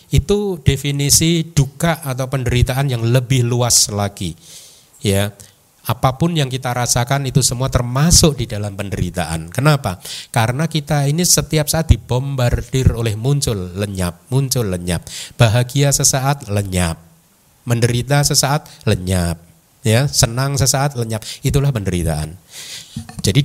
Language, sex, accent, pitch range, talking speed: Indonesian, male, native, 105-145 Hz, 115 wpm